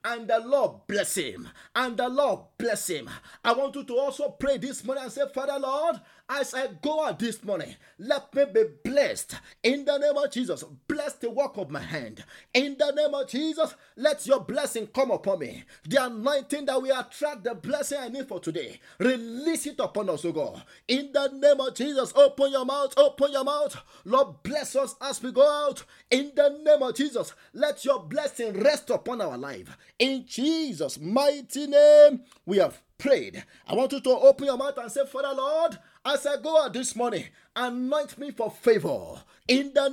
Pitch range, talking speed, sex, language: 255-290 Hz, 195 wpm, male, English